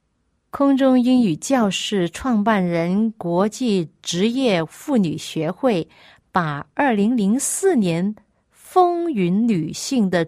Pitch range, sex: 175-235 Hz, female